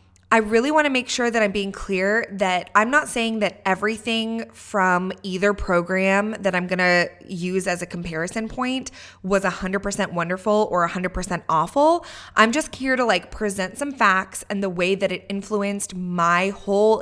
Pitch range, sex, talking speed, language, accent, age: 180-215 Hz, female, 170 wpm, English, American, 20-39